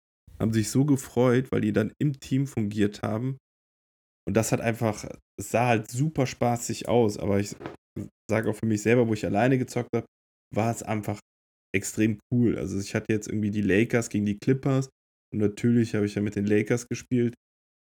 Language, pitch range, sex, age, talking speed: German, 100-115 Hz, male, 10-29, 185 wpm